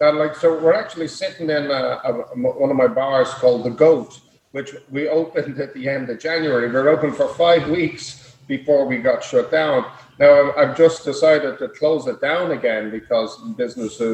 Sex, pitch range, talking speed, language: male, 130-165 Hz, 200 wpm, English